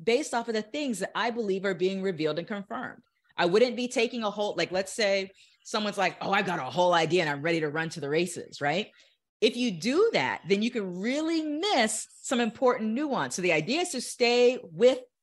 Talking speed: 230 wpm